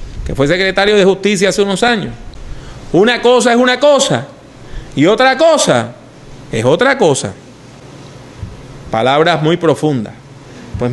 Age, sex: 30-49, male